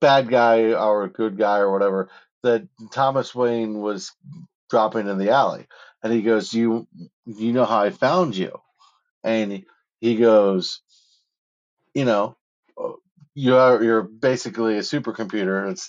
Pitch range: 100-120 Hz